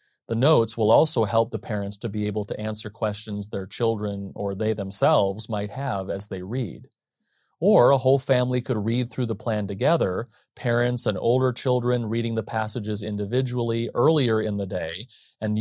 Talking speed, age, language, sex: 175 wpm, 30-49, English, male